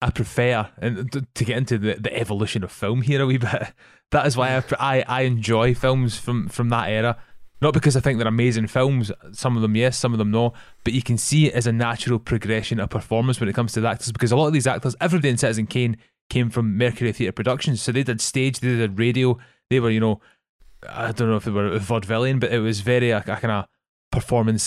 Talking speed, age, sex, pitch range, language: 245 wpm, 20-39, male, 110-125 Hz, English